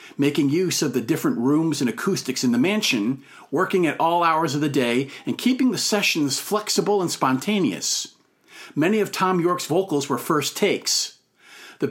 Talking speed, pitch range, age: 170 wpm, 140-200 Hz, 50-69